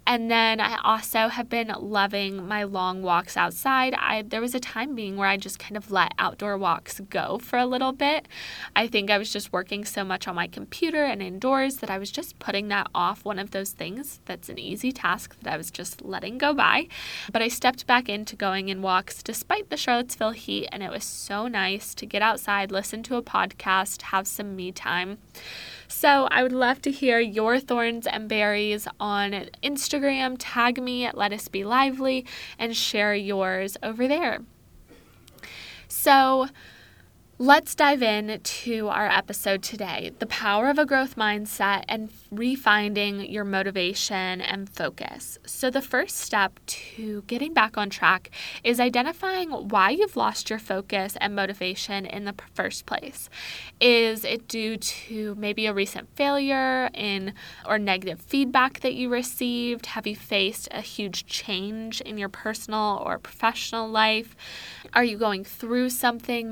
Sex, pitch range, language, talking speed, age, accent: female, 200-250 Hz, English, 170 wpm, 10-29, American